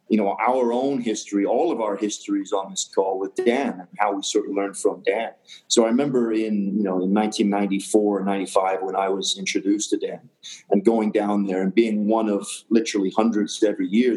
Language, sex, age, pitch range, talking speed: English, male, 30-49, 100-120 Hz, 210 wpm